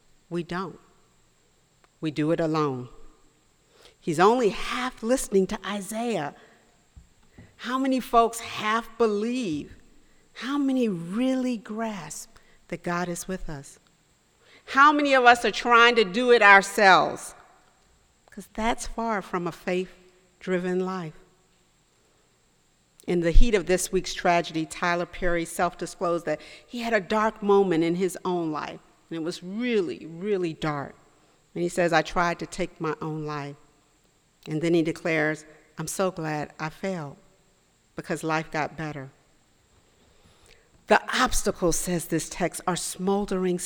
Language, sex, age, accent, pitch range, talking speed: English, female, 50-69, American, 160-205 Hz, 135 wpm